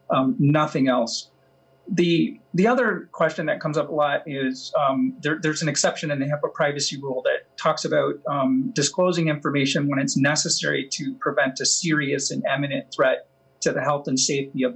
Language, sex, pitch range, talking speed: English, male, 140-175 Hz, 185 wpm